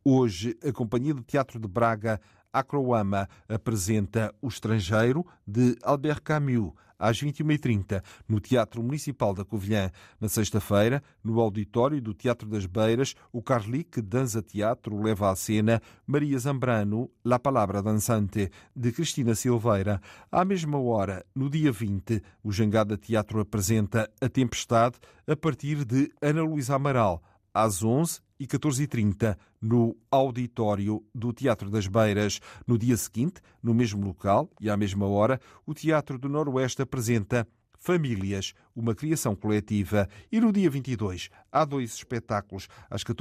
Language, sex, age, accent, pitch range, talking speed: Portuguese, male, 40-59, Portuguese, 105-130 Hz, 140 wpm